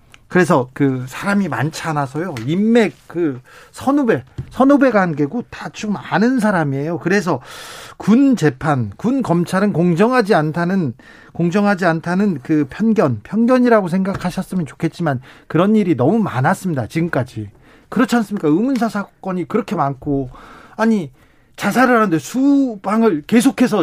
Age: 40-59